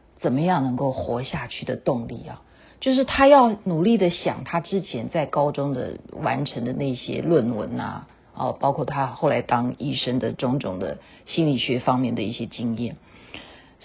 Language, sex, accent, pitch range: Chinese, female, native, 140-225 Hz